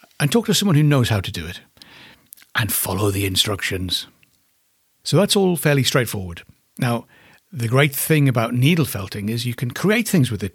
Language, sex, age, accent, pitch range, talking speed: English, male, 60-79, British, 110-155 Hz, 190 wpm